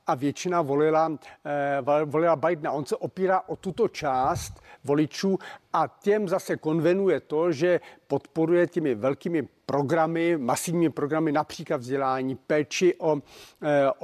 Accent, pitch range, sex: native, 150-195 Hz, male